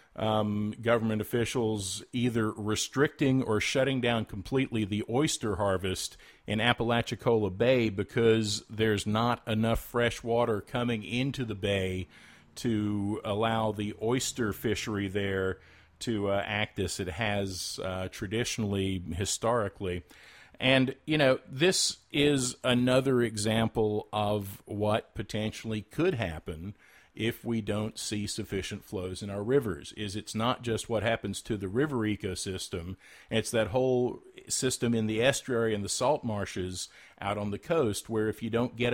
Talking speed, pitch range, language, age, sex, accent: 140 wpm, 105-120 Hz, English, 50-69, male, American